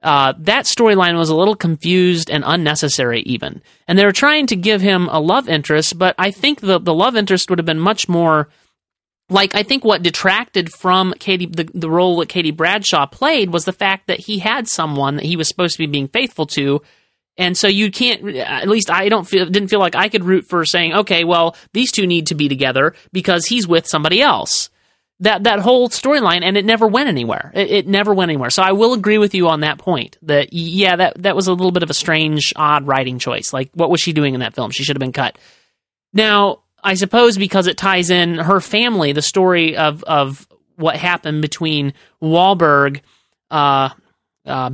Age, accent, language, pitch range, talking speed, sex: 40-59, American, English, 155-200 Hz, 215 wpm, male